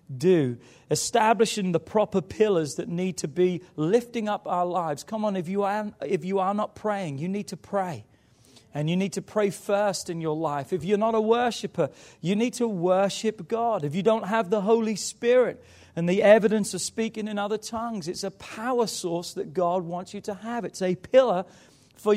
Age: 40-59